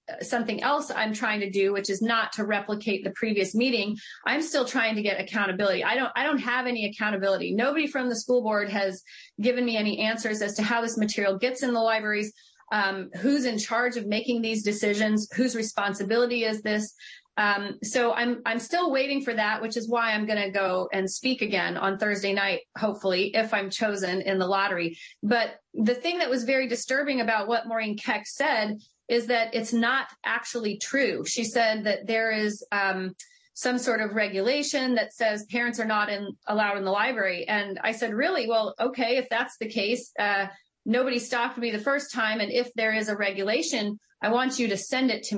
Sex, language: female, English